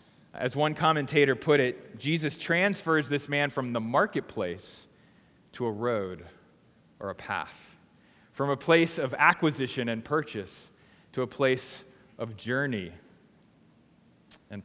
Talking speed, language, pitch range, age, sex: 125 wpm, English, 105-150 Hz, 30-49, male